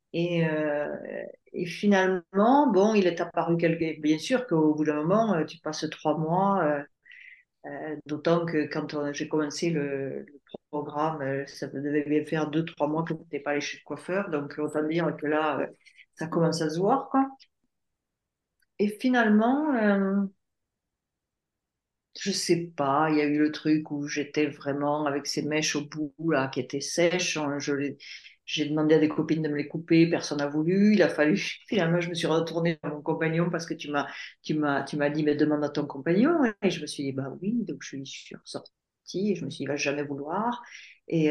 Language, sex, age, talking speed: French, female, 50-69, 215 wpm